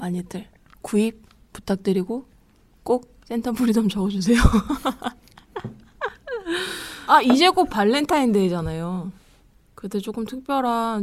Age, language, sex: 20-39, Korean, female